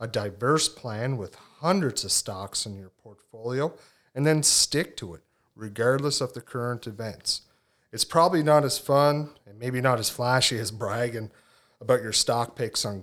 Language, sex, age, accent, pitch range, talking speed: English, male, 30-49, American, 100-130 Hz, 170 wpm